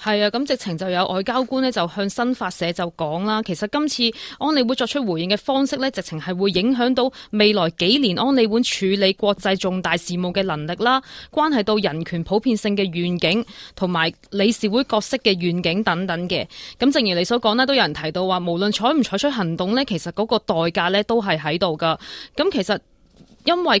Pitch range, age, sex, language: 175-240 Hz, 20-39, female, Chinese